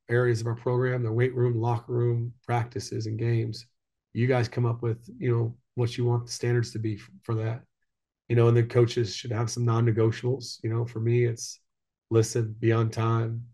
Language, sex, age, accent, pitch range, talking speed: English, male, 30-49, American, 115-125 Hz, 210 wpm